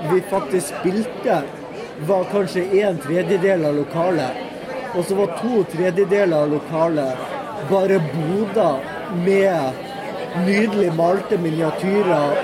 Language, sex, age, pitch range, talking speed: English, male, 30-49, 160-200 Hz, 105 wpm